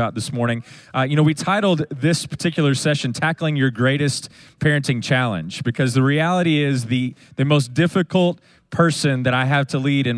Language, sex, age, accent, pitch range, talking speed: English, male, 30-49, American, 115-145 Hz, 175 wpm